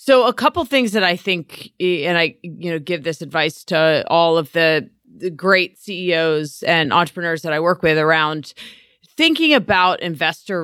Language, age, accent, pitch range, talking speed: English, 30-49, American, 160-190 Hz, 170 wpm